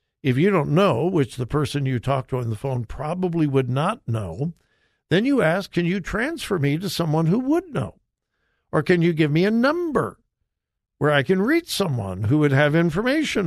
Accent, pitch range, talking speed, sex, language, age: American, 135-200 Hz, 200 wpm, male, English, 60-79